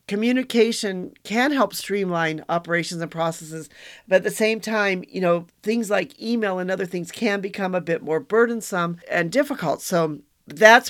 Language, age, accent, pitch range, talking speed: English, 50-69, American, 155-195 Hz, 165 wpm